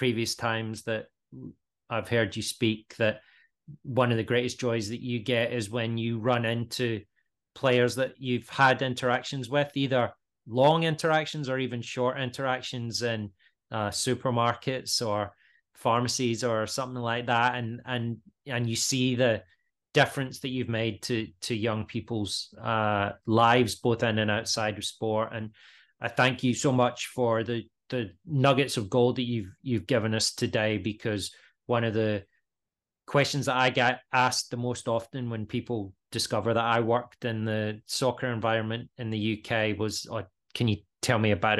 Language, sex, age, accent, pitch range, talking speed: English, male, 30-49, British, 110-125 Hz, 165 wpm